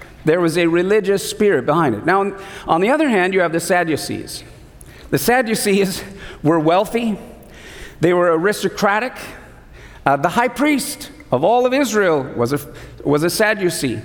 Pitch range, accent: 155-210 Hz, American